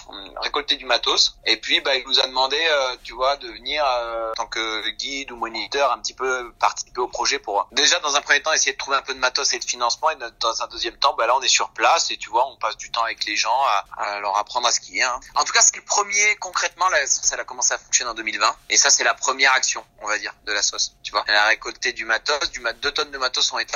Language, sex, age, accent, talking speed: French, male, 30-49, French, 290 wpm